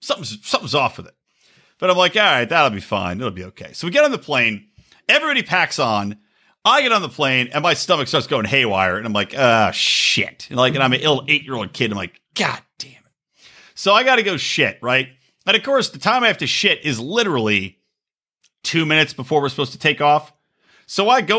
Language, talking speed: English, 240 wpm